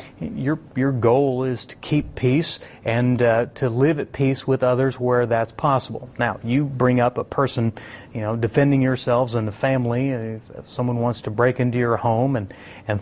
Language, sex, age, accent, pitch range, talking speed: English, male, 30-49, American, 110-135 Hz, 200 wpm